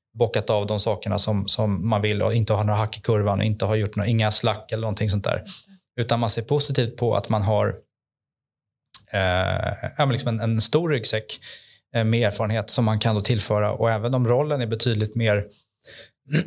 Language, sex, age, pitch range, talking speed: Swedish, male, 20-39, 110-130 Hz, 185 wpm